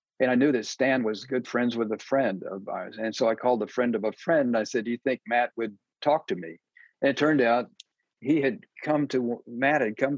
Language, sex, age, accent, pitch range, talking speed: English, male, 50-69, American, 110-130 Hz, 260 wpm